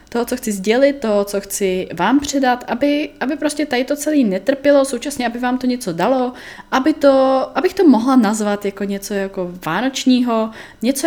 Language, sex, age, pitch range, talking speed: Czech, female, 20-39, 190-250 Hz, 180 wpm